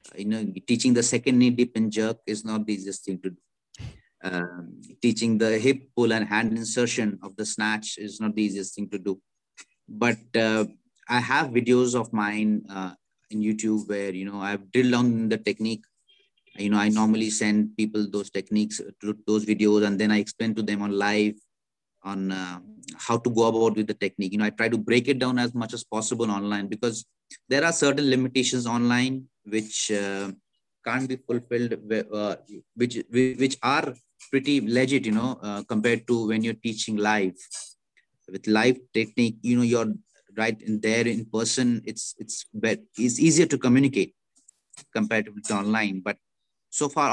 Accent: Indian